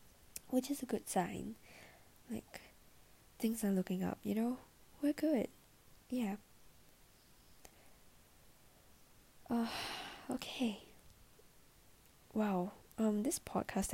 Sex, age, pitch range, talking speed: female, 10-29, 185-240 Hz, 90 wpm